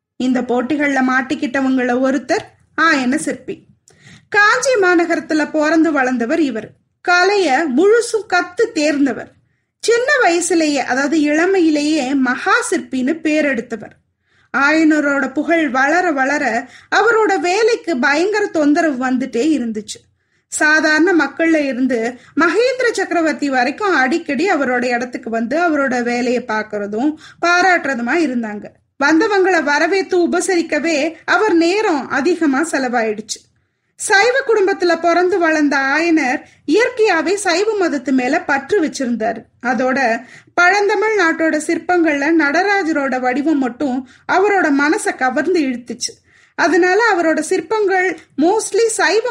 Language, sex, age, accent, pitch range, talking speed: Tamil, female, 20-39, native, 265-360 Hz, 95 wpm